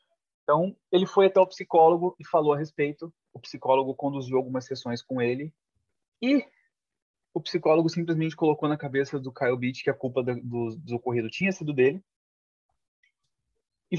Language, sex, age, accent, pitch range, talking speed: Portuguese, male, 20-39, Brazilian, 120-165 Hz, 155 wpm